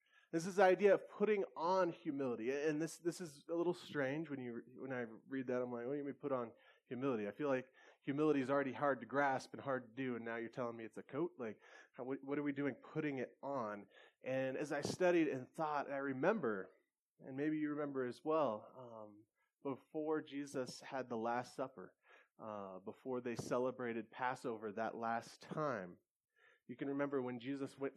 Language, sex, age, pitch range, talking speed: English, male, 20-39, 130-170 Hz, 205 wpm